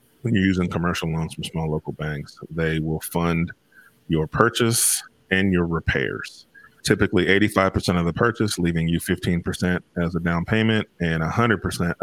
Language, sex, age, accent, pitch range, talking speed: English, male, 30-49, American, 80-90 Hz, 155 wpm